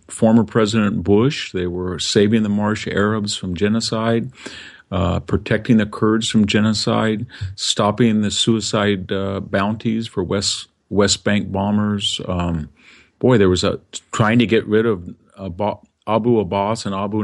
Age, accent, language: 50-69, American, English